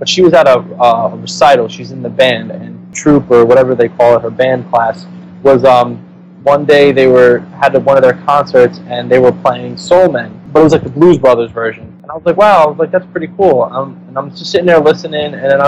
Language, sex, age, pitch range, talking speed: English, male, 20-39, 120-160 Hz, 255 wpm